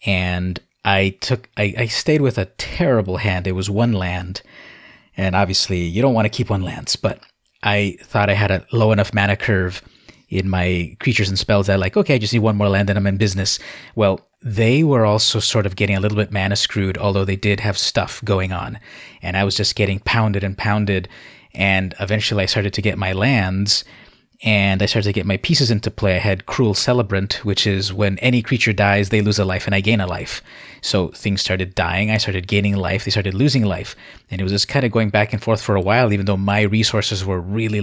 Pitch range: 95-110 Hz